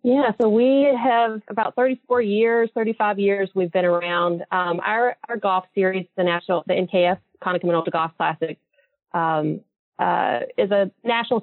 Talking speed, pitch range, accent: 150 wpm, 160-195 Hz, American